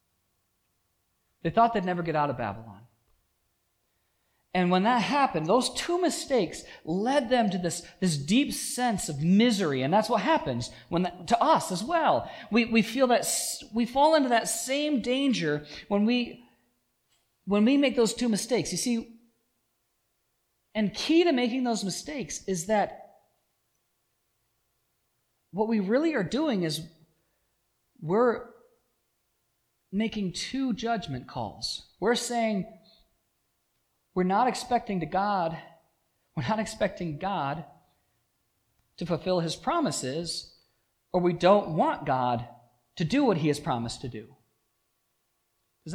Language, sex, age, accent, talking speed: English, male, 40-59, American, 135 wpm